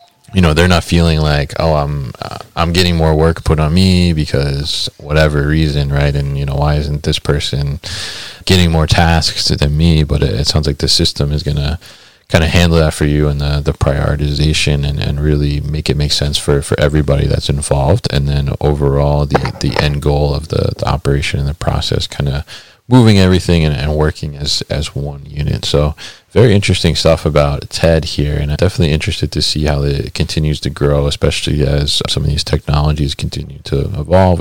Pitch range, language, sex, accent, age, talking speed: 75-85 Hz, English, male, American, 30-49, 200 wpm